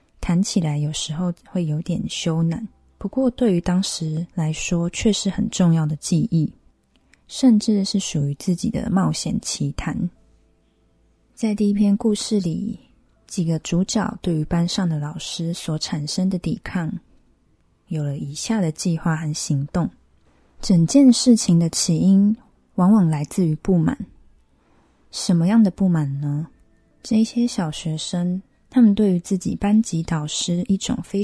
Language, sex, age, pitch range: Chinese, female, 20-39, 160-205 Hz